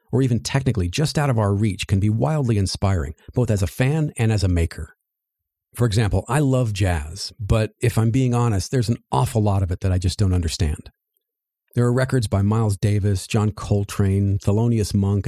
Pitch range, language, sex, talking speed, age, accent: 95-125 Hz, English, male, 200 wpm, 50-69, American